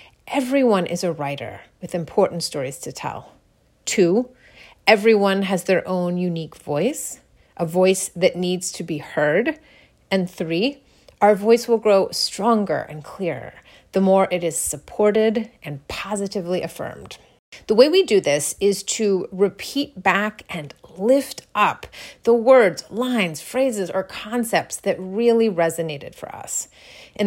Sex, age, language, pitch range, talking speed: female, 30-49, English, 175-225 Hz, 140 wpm